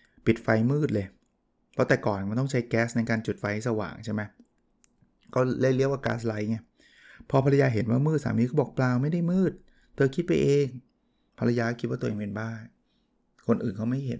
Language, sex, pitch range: Thai, male, 115-135 Hz